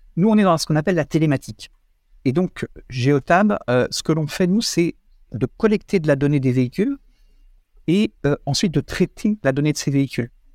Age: 50-69